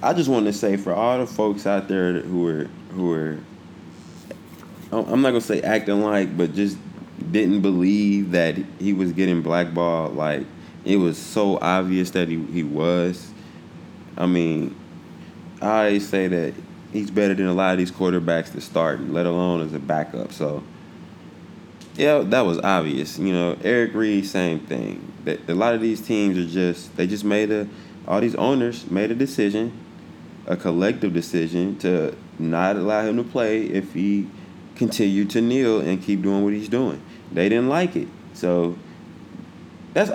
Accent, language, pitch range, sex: American, English, 90-105 Hz, male